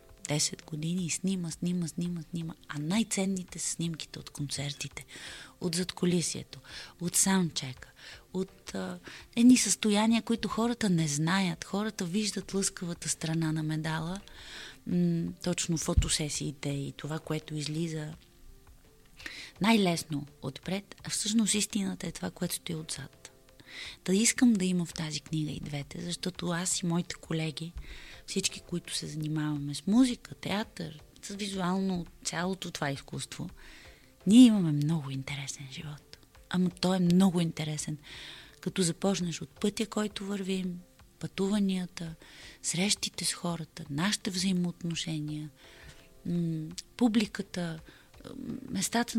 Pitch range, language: 155-190 Hz, Bulgarian